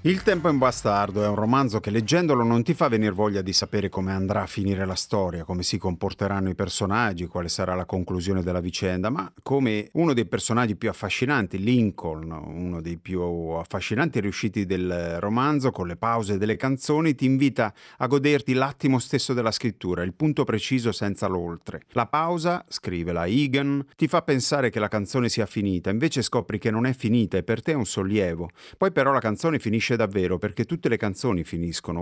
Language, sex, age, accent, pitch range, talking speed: Italian, male, 30-49, native, 95-130 Hz, 195 wpm